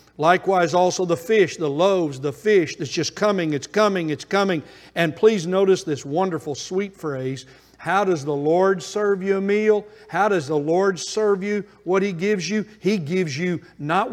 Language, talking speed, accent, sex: English, 185 wpm, American, male